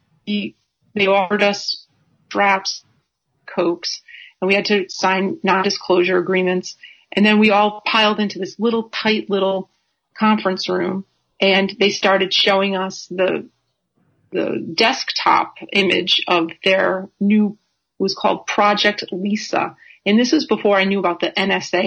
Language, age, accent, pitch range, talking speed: English, 40-59, American, 190-215 Hz, 135 wpm